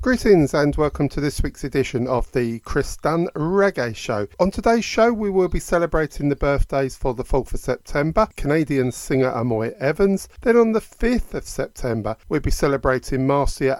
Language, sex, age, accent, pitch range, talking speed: English, male, 50-69, British, 120-185 Hz, 180 wpm